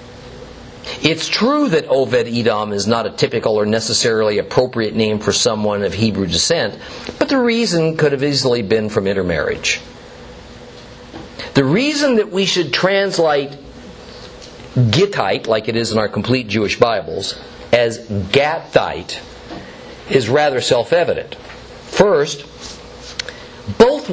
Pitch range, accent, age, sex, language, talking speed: 115-170 Hz, American, 50-69, male, English, 120 wpm